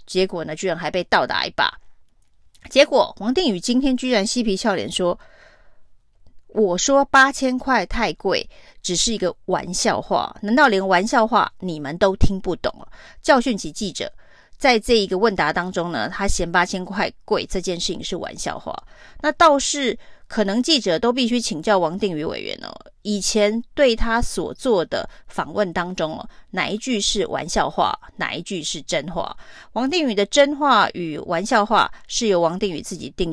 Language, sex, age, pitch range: Chinese, female, 30-49, 180-240 Hz